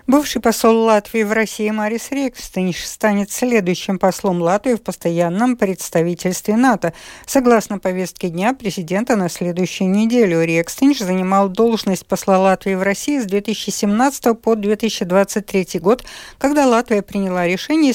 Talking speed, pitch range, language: 125 wpm, 185-235 Hz, Russian